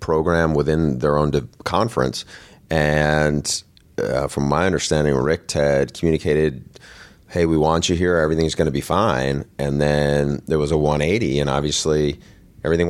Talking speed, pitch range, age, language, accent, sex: 155 wpm, 70-85 Hz, 30-49, English, American, male